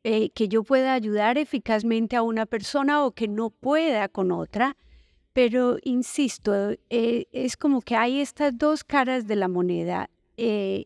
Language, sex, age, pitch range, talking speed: Spanish, female, 40-59, 210-270 Hz, 160 wpm